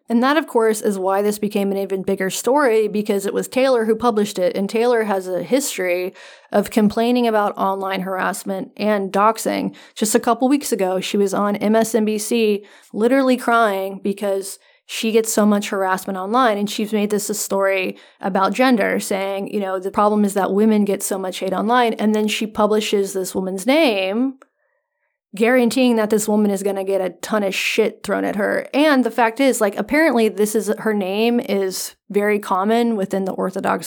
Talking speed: 190 wpm